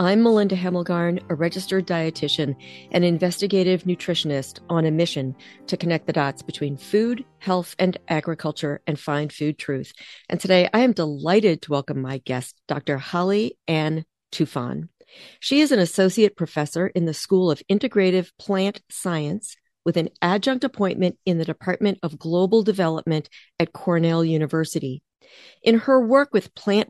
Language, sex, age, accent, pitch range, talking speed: English, female, 40-59, American, 160-205 Hz, 150 wpm